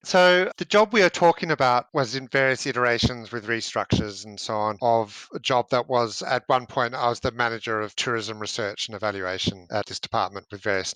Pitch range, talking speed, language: 110-130 Hz, 210 wpm, English